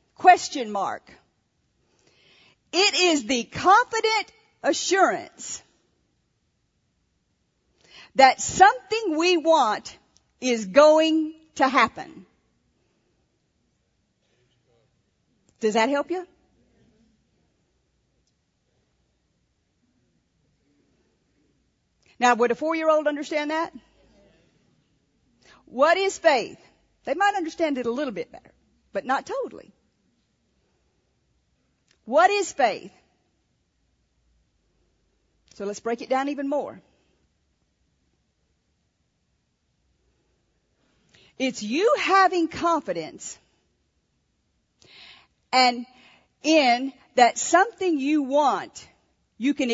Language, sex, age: English, female, 50-69